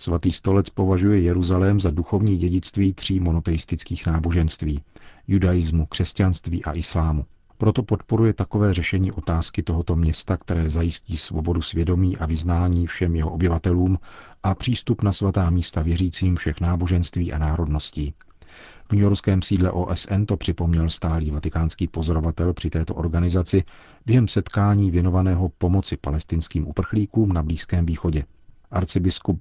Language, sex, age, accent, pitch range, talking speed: Czech, male, 40-59, native, 80-95 Hz, 125 wpm